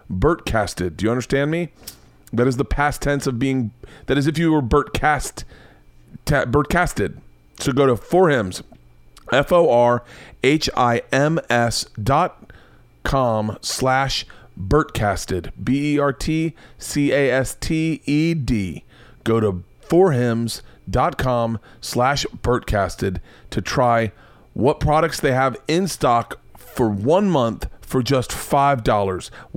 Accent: American